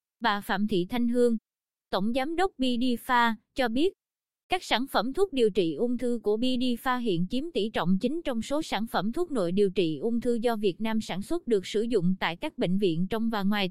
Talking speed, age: 225 wpm, 20-39